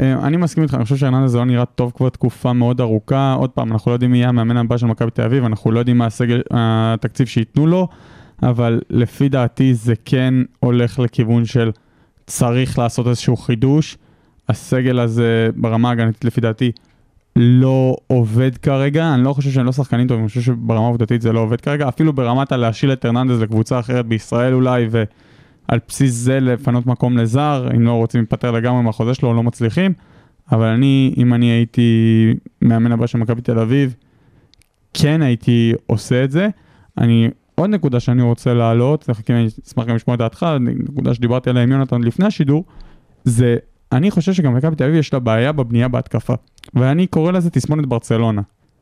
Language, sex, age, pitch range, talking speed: Hebrew, male, 20-39, 115-135 Hz, 180 wpm